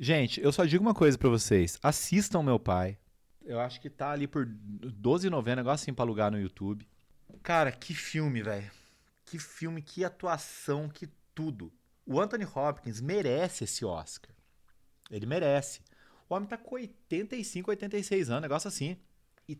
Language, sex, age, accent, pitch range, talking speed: Portuguese, male, 30-49, Brazilian, 115-180 Hz, 160 wpm